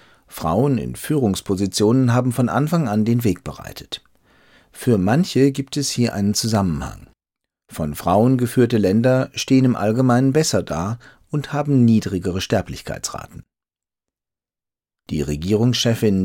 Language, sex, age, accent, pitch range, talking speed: German, male, 40-59, German, 95-130 Hz, 120 wpm